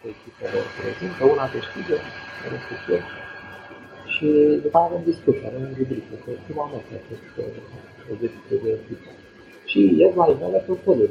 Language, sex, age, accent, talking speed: Romanian, male, 50-69, Indian, 160 wpm